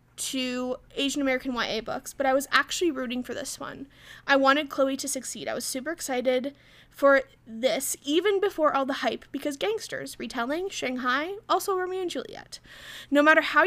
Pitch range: 255-300 Hz